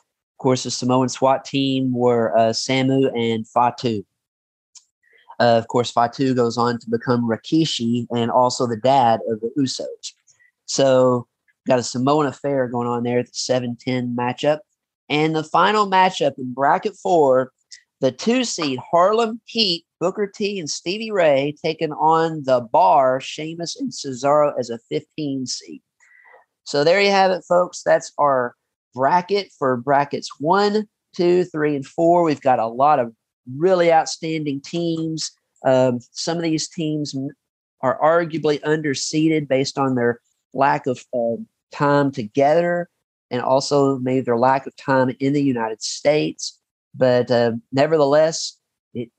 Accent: American